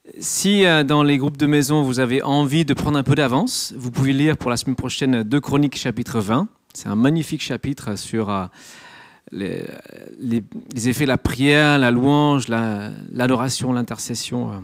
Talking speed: 170 wpm